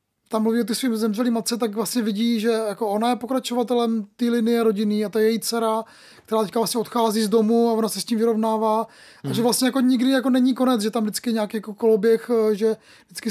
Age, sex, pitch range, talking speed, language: 20-39, male, 225-250 Hz, 230 wpm, Czech